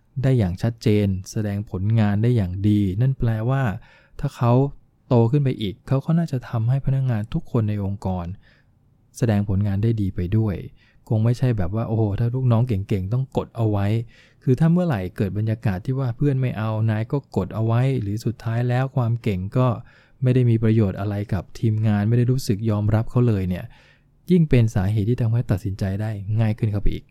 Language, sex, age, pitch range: English, male, 20-39, 105-125 Hz